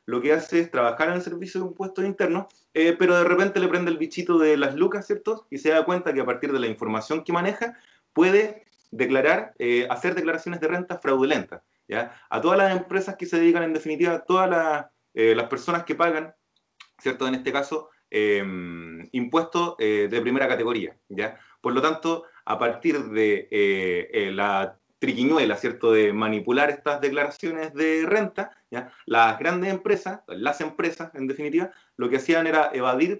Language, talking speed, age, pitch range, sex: Spanish, 180 wpm, 30-49, 135-180 Hz, male